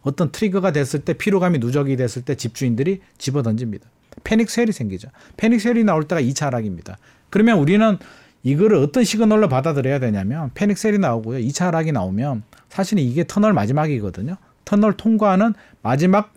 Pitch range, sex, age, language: 125-195 Hz, male, 40-59, Korean